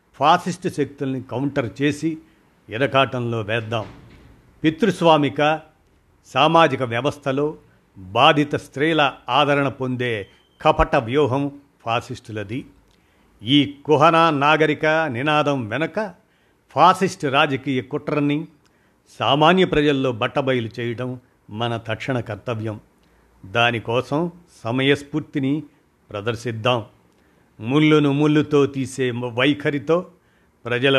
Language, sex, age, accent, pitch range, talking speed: Telugu, male, 50-69, native, 115-150 Hz, 75 wpm